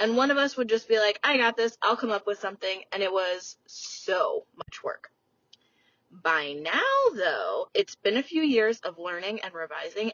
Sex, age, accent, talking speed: female, 20-39, American, 200 wpm